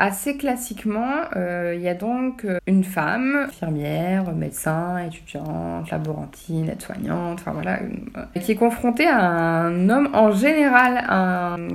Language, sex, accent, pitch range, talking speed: French, female, French, 170-235 Hz, 145 wpm